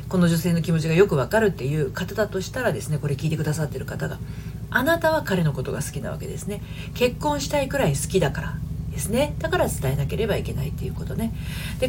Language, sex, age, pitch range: Japanese, female, 40-59, 150-200 Hz